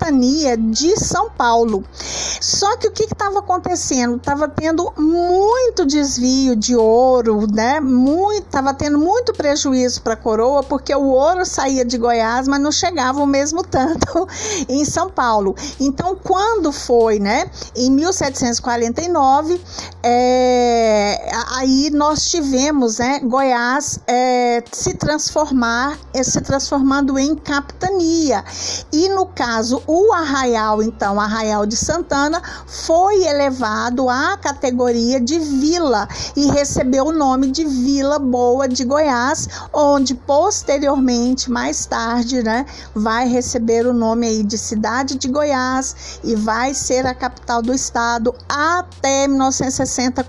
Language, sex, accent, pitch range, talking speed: Portuguese, female, Brazilian, 240-295 Hz, 130 wpm